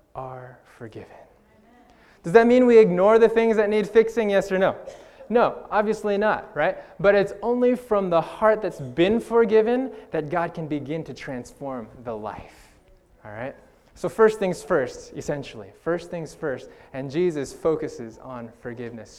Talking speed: 160 wpm